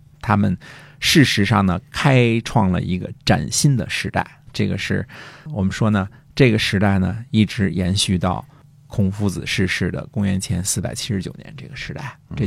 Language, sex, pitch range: Chinese, male, 95-125 Hz